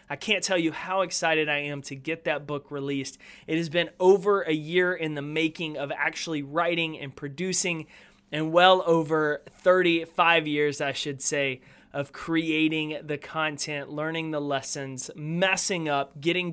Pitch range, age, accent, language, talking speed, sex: 145-175 Hz, 20-39, American, English, 165 wpm, male